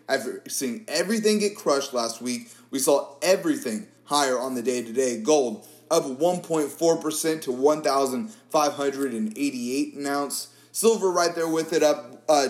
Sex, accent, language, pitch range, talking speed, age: male, American, English, 130-175 Hz, 140 wpm, 30-49